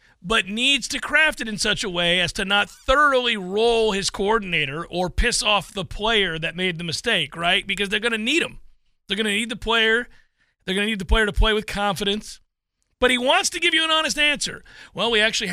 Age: 40-59